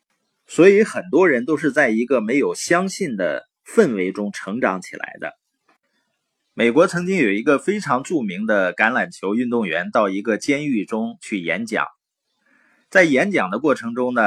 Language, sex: Chinese, male